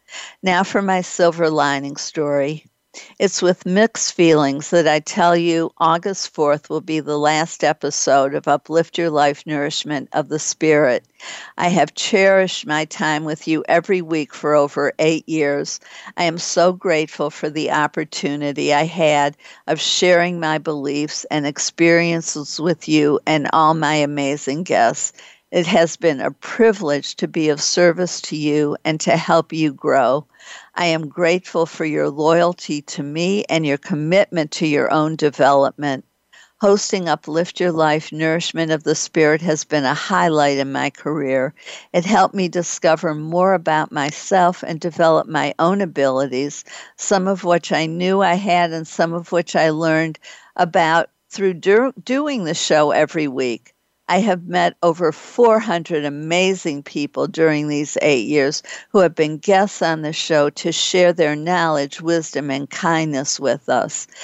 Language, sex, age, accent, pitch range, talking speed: English, female, 60-79, American, 150-175 Hz, 160 wpm